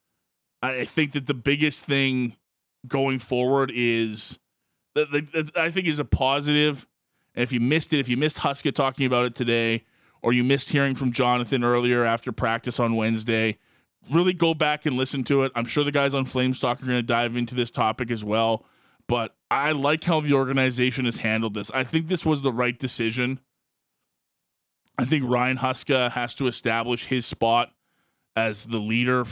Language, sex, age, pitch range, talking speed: English, male, 20-39, 120-140 Hz, 180 wpm